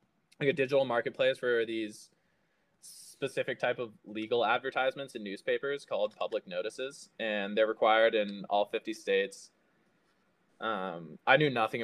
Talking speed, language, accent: 135 wpm, English, American